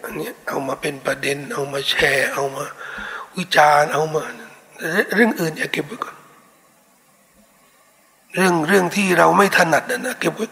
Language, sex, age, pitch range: Thai, male, 60-79, 175-235 Hz